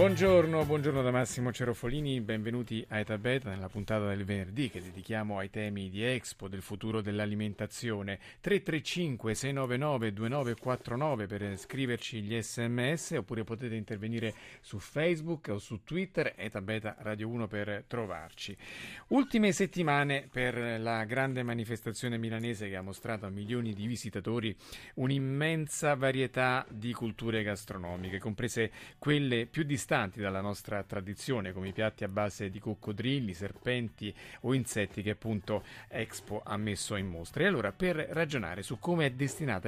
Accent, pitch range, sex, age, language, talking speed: native, 105-130 Hz, male, 30-49, Italian, 140 wpm